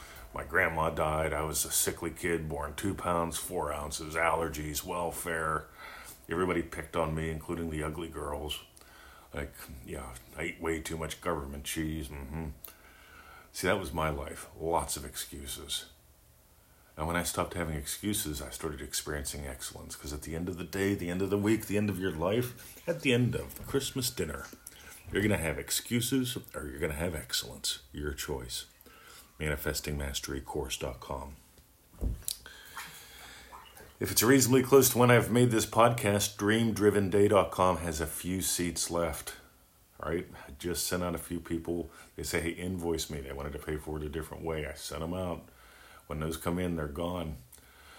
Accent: American